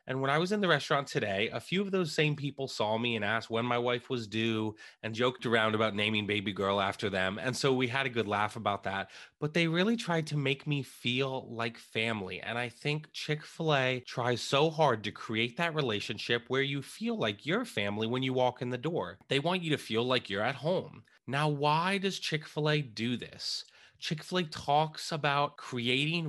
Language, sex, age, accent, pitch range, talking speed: English, male, 30-49, American, 115-150 Hz, 210 wpm